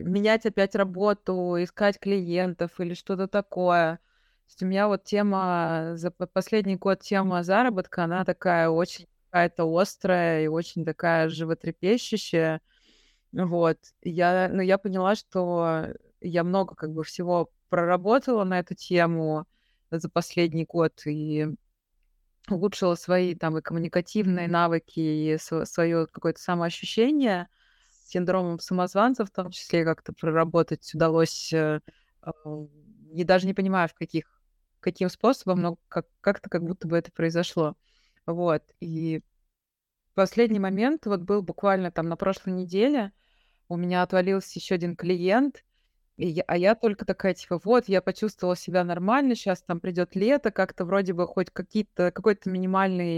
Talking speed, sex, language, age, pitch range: 135 wpm, female, Russian, 20-39, 170-195 Hz